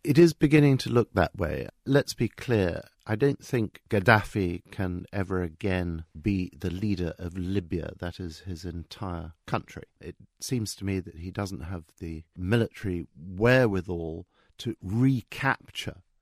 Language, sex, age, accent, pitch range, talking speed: English, male, 50-69, British, 90-120 Hz, 150 wpm